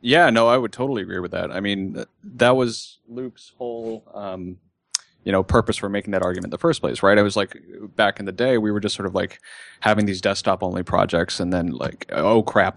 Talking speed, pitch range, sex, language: 235 wpm, 90-105 Hz, male, English